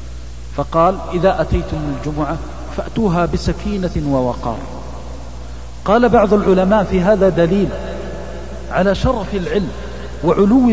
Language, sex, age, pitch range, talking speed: Arabic, male, 40-59, 135-190 Hz, 95 wpm